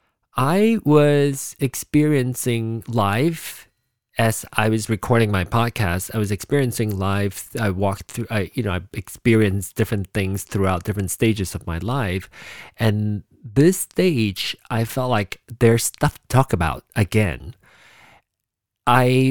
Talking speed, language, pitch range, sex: 135 wpm, English, 100-140 Hz, male